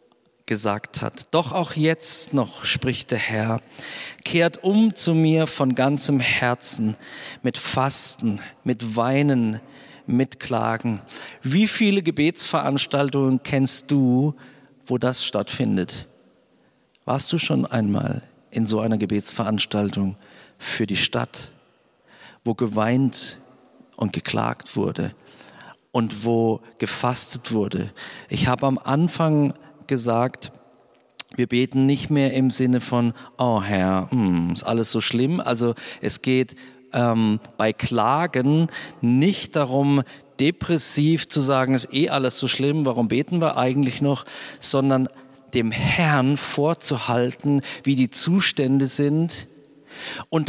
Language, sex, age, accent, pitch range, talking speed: German, male, 50-69, German, 120-145 Hz, 115 wpm